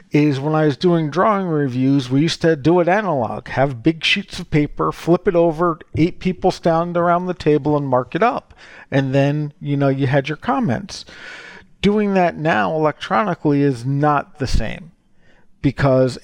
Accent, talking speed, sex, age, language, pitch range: American, 175 wpm, male, 50-69, English, 140-170 Hz